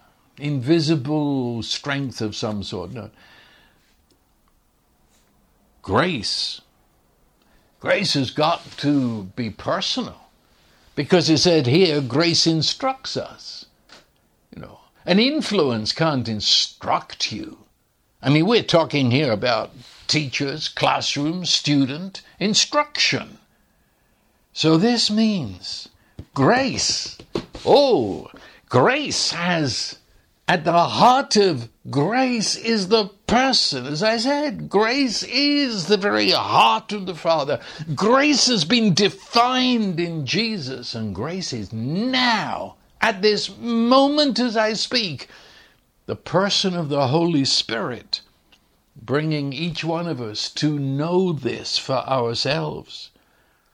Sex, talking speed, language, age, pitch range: male, 105 wpm, English, 60-79, 140-215 Hz